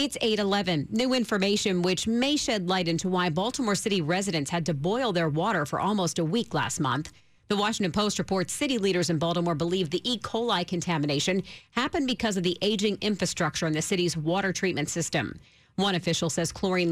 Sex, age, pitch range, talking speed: female, 40-59, 170-225 Hz, 190 wpm